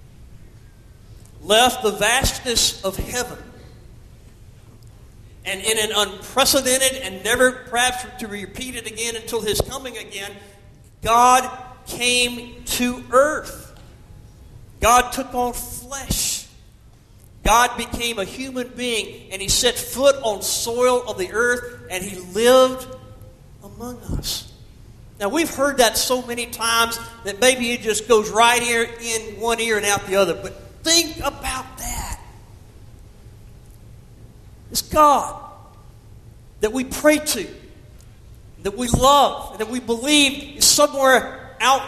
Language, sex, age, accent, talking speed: English, male, 40-59, American, 125 wpm